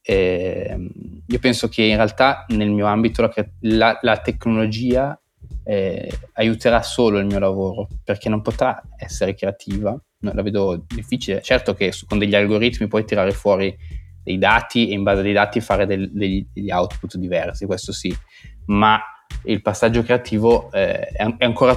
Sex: male